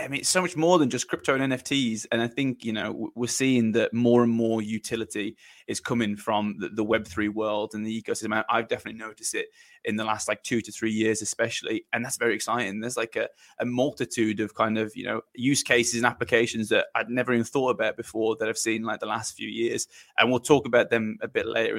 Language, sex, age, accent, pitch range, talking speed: English, male, 20-39, British, 110-120 Hz, 240 wpm